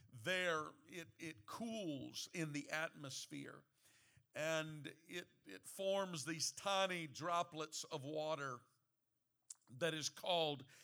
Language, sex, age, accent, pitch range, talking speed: English, male, 50-69, American, 145-190 Hz, 105 wpm